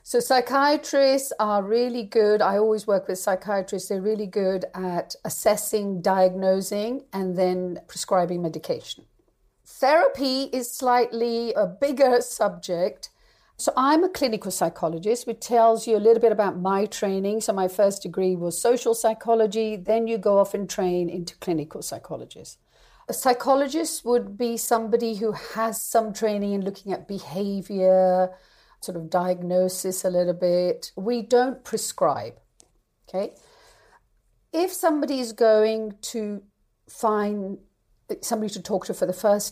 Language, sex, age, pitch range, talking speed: English, female, 50-69, 185-230 Hz, 140 wpm